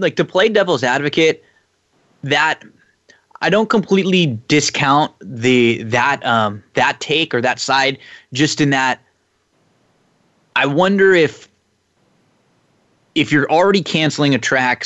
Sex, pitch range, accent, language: male, 115-145 Hz, American, English